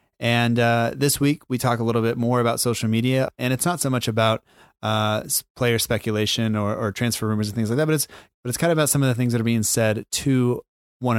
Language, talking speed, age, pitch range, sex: English, 250 wpm, 30-49, 115-130 Hz, male